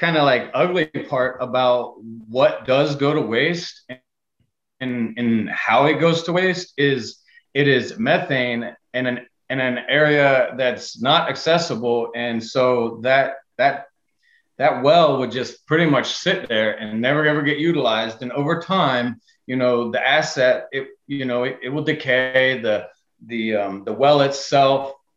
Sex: male